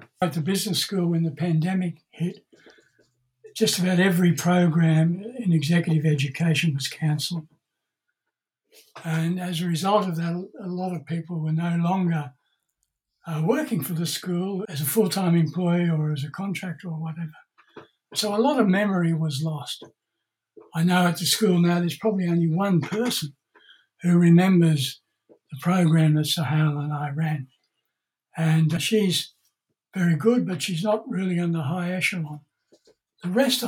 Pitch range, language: 160-195 Hz, English